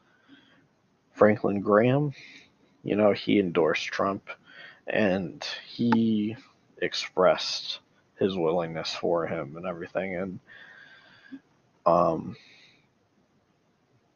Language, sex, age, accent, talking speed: English, male, 40-59, American, 75 wpm